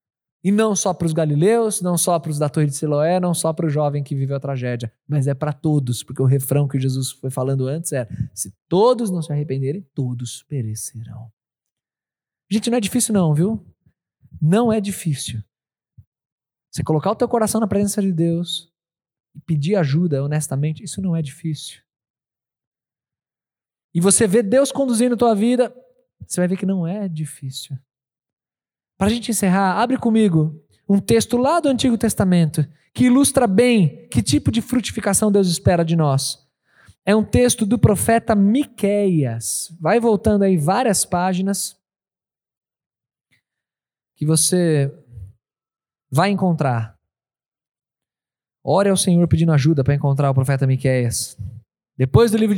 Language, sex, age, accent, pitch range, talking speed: Portuguese, male, 20-39, Brazilian, 135-200 Hz, 155 wpm